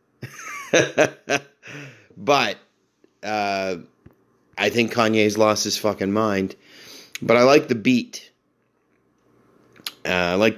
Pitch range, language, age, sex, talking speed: 95-110 Hz, English, 30-49, male, 95 wpm